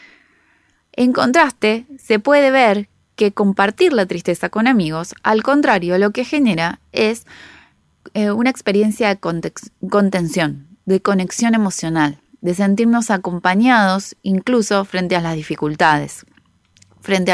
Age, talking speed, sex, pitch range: 20-39, 120 wpm, female, 175-215 Hz